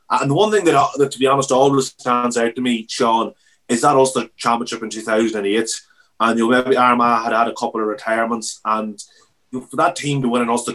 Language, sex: English, male